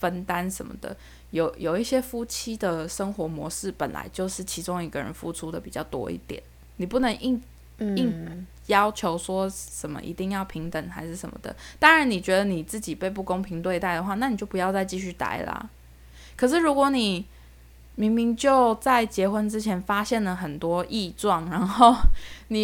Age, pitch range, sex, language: 20-39, 170-225 Hz, female, Chinese